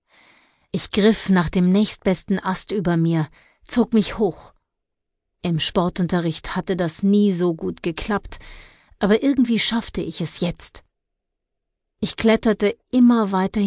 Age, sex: 30-49, female